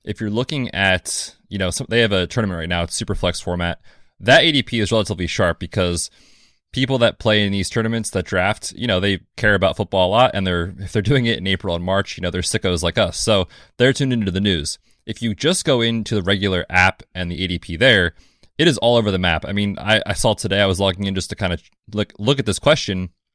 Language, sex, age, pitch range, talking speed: English, male, 20-39, 90-120 Hz, 250 wpm